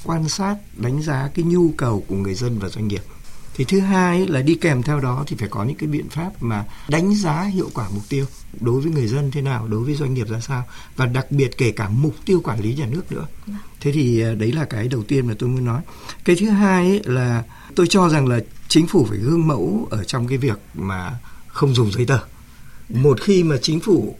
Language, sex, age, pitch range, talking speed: Vietnamese, male, 60-79, 120-170 Hz, 245 wpm